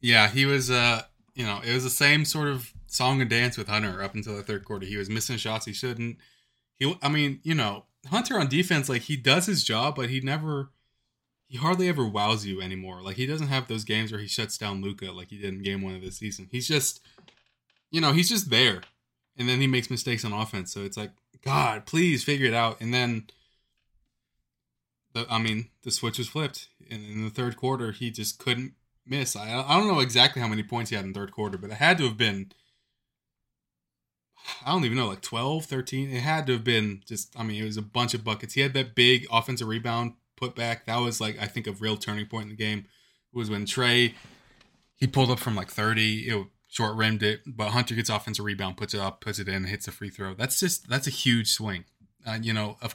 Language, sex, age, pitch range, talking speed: English, male, 20-39, 105-130 Hz, 240 wpm